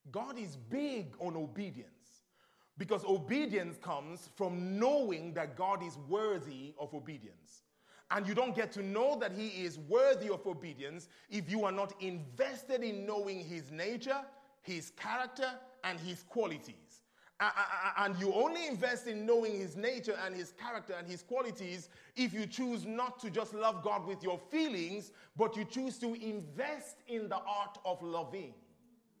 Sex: male